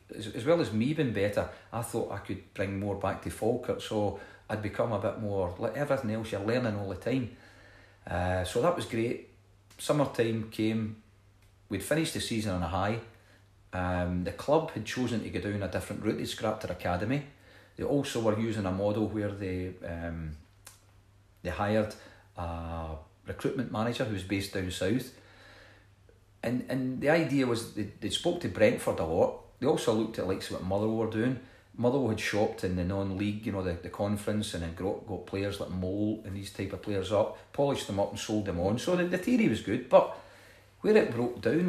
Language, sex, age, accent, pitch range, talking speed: English, male, 40-59, British, 95-115 Hz, 200 wpm